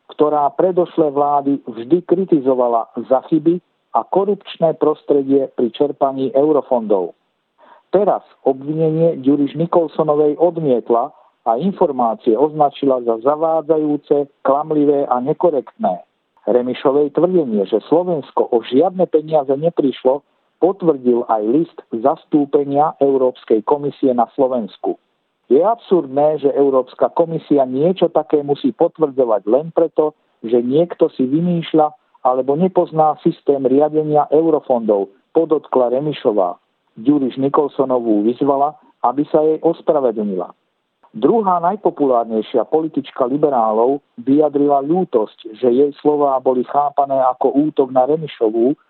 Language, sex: Slovak, male